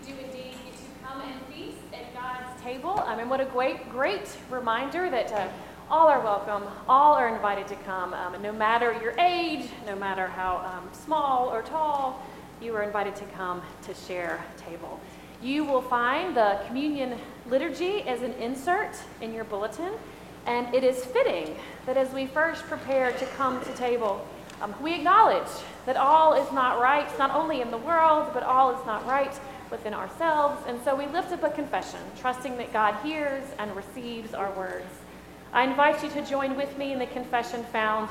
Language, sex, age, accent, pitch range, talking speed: English, female, 30-49, American, 210-275 Hz, 185 wpm